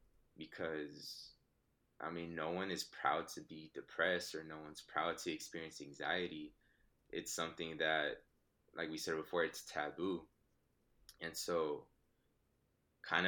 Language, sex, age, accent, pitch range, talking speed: English, male, 20-39, American, 75-85 Hz, 130 wpm